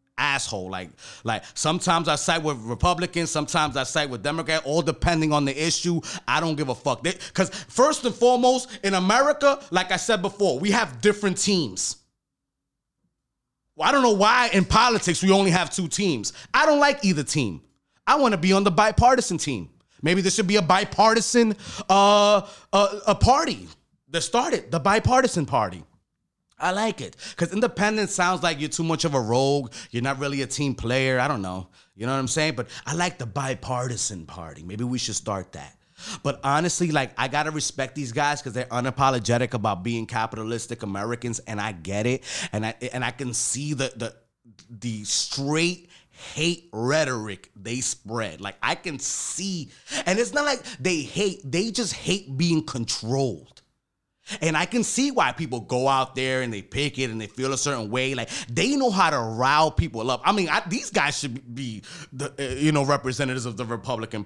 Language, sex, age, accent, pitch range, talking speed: English, male, 30-49, American, 120-185 Hz, 190 wpm